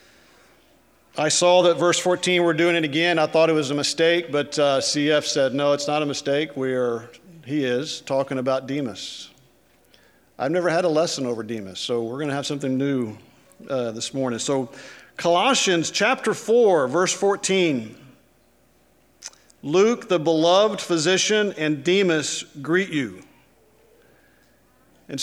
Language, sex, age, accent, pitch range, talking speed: English, male, 50-69, American, 130-165 Hz, 150 wpm